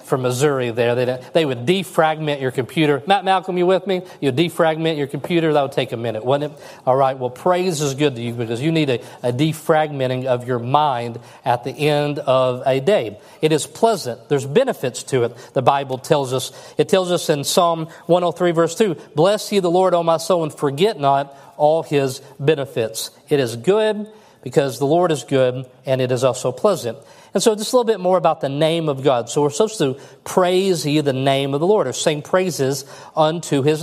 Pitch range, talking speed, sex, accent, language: 135-175 Hz, 215 wpm, male, American, English